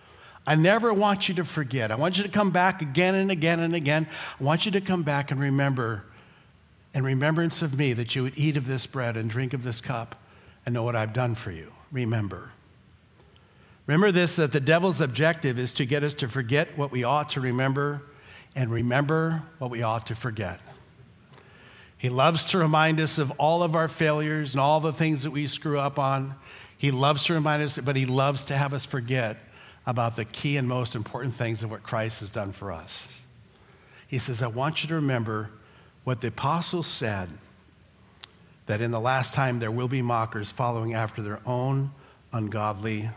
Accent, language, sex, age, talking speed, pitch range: American, English, male, 50-69, 200 wpm, 115-150 Hz